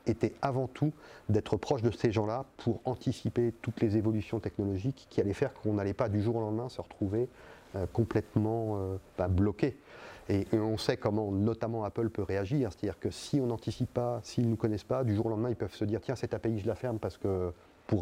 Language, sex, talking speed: French, male, 230 wpm